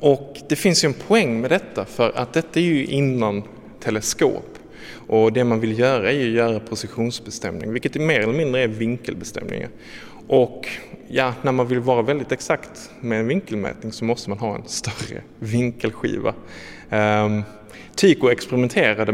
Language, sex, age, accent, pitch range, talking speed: Danish, male, 20-39, Norwegian, 105-125 Hz, 160 wpm